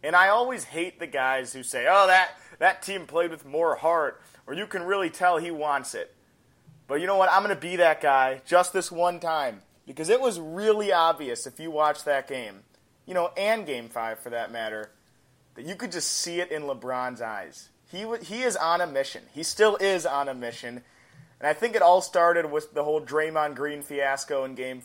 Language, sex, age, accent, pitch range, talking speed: English, male, 30-49, American, 145-190 Hz, 220 wpm